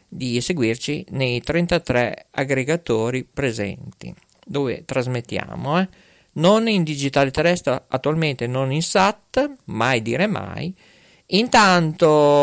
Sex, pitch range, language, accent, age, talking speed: male, 130-185 Hz, Italian, native, 50-69, 100 wpm